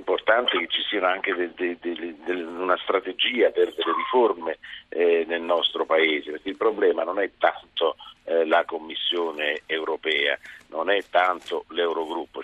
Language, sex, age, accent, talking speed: Italian, male, 50-69, native, 125 wpm